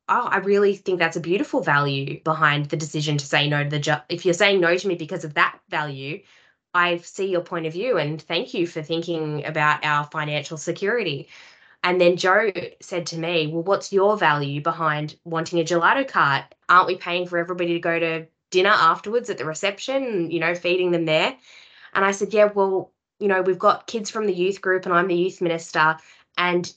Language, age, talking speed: English, 20-39, 210 wpm